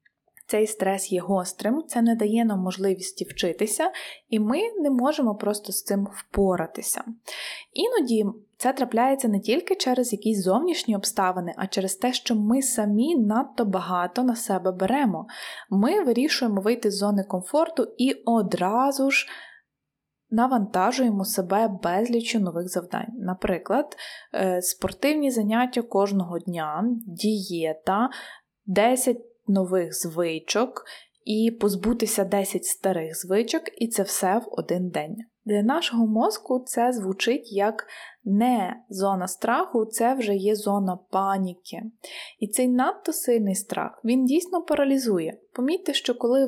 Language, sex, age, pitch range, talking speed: Ukrainian, female, 20-39, 195-245 Hz, 125 wpm